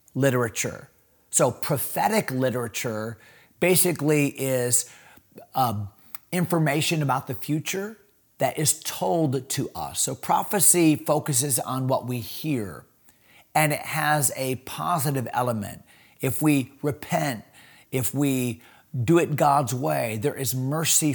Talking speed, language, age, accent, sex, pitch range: 115 wpm, English, 40-59, American, male, 125-150 Hz